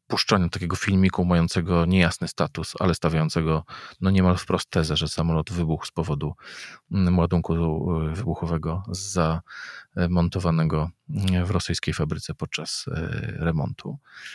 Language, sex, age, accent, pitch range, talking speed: Polish, male, 40-59, native, 90-110 Hz, 95 wpm